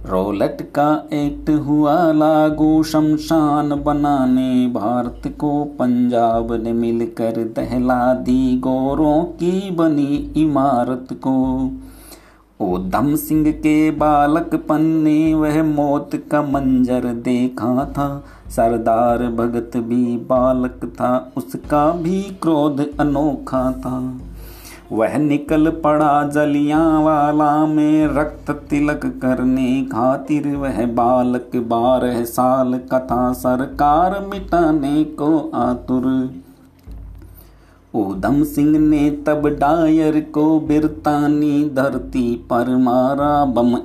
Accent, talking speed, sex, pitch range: native, 95 wpm, male, 125-150 Hz